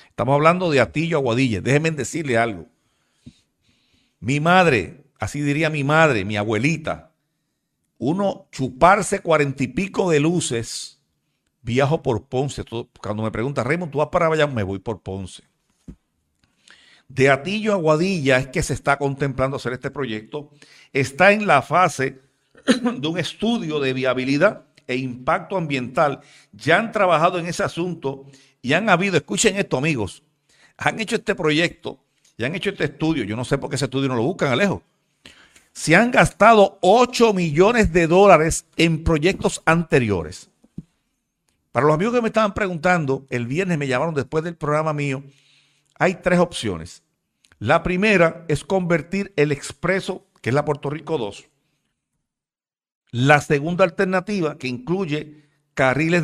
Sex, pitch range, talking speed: male, 135-175 Hz, 150 wpm